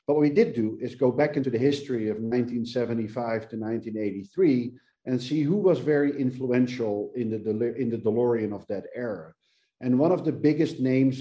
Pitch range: 115-140 Hz